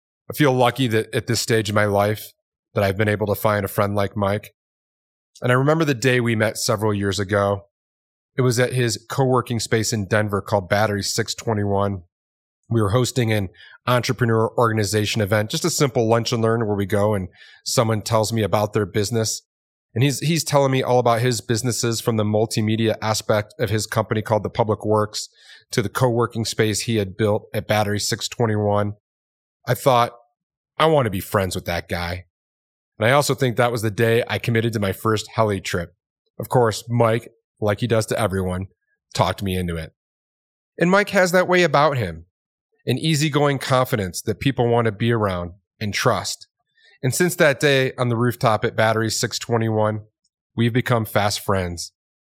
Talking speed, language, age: 185 wpm, English, 30-49